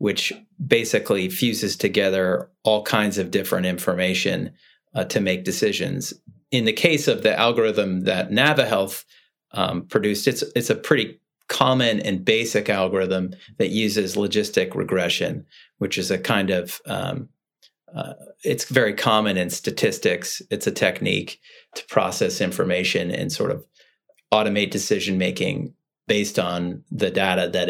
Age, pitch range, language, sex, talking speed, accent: 30-49, 95-110 Hz, English, male, 135 wpm, American